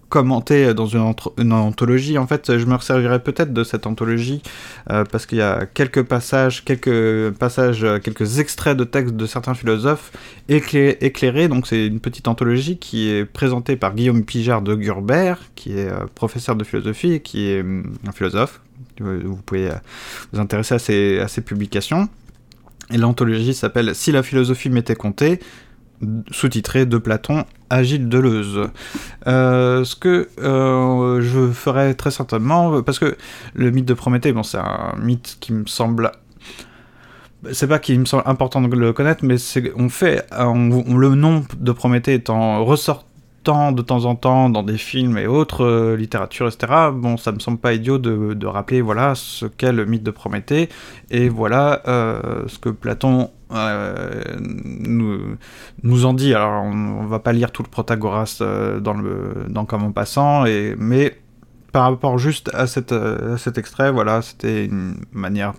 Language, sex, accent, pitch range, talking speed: French, male, French, 110-130 Hz, 175 wpm